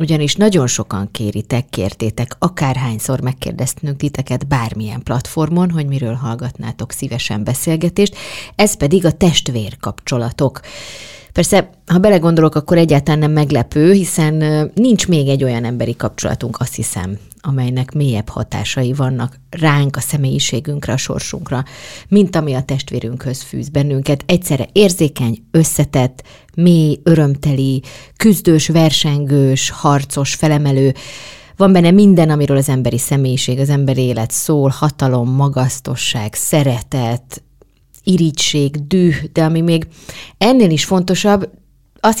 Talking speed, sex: 115 wpm, female